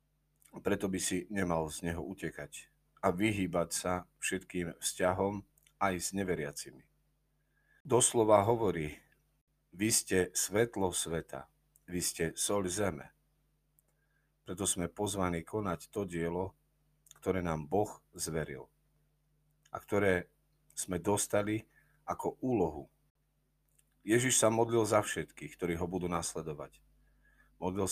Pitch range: 90-115 Hz